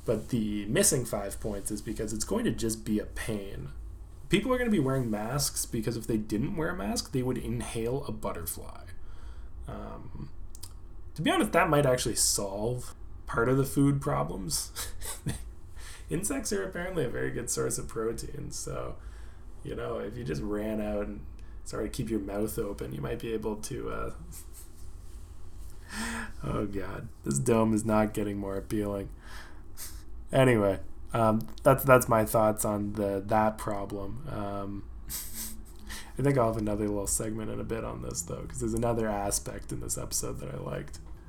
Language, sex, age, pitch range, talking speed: English, male, 20-39, 85-115 Hz, 170 wpm